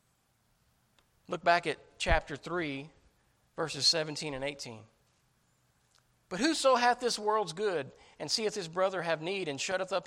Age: 40-59